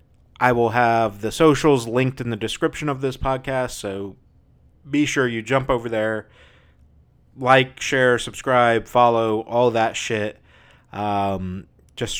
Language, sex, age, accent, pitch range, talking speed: English, male, 30-49, American, 105-125 Hz, 140 wpm